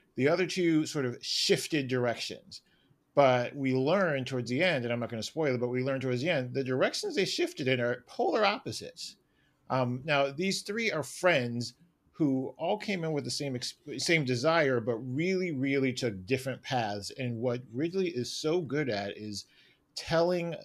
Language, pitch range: English, 120-155 Hz